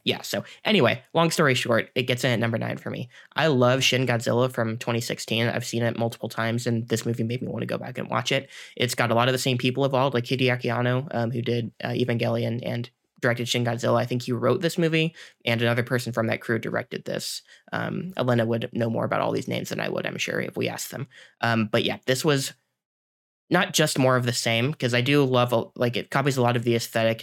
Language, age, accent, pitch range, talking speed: English, 20-39, American, 115-125 Hz, 250 wpm